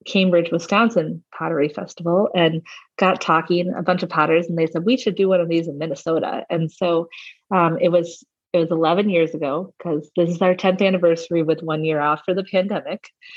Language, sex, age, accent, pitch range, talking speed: English, female, 30-49, American, 160-190 Hz, 200 wpm